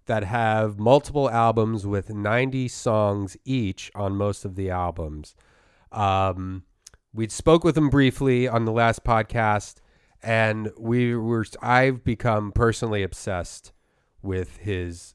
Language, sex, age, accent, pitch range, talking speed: English, male, 30-49, American, 95-120 Hz, 125 wpm